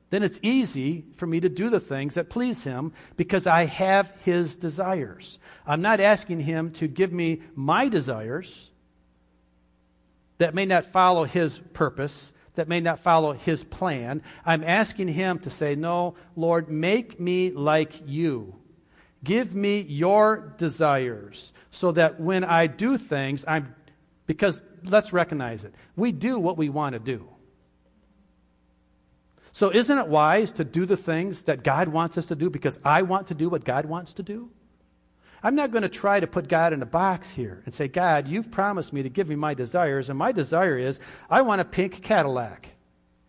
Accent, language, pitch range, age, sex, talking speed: American, English, 135-185 Hz, 50-69, male, 175 wpm